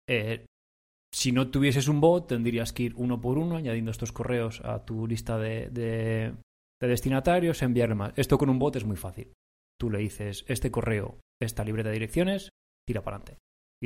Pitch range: 110-140 Hz